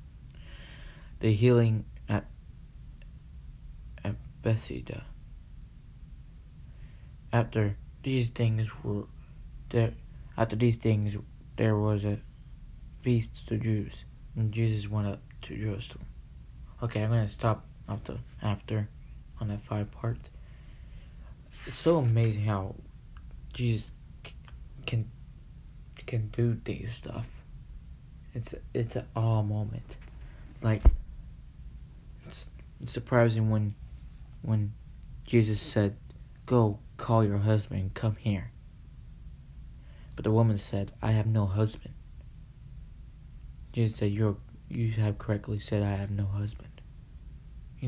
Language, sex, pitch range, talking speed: English, male, 100-115 Hz, 105 wpm